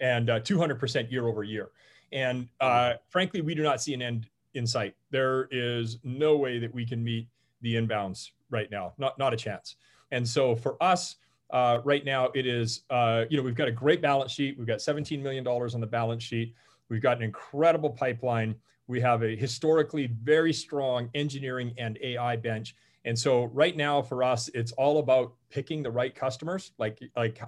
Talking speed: 195 wpm